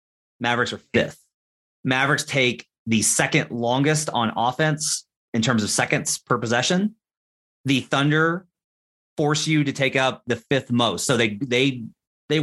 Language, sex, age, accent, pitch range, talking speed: English, male, 30-49, American, 115-155 Hz, 145 wpm